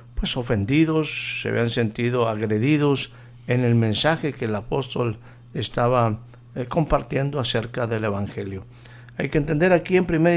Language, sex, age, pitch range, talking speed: Spanish, male, 60-79, 115-140 Hz, 135 wpm